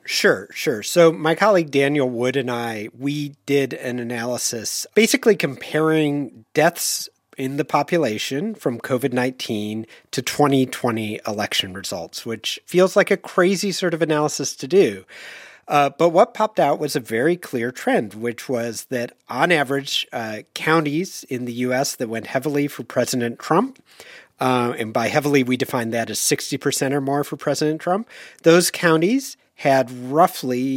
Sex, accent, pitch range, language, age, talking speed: male, American, 120-160 Hz, English, 40-59, 155 wpm